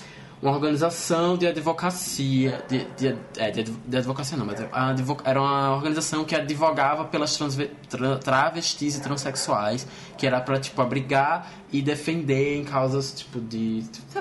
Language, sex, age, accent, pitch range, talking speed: Portuguese, male, 20-39, Brazilian, 130-150 Hz, 130 wpm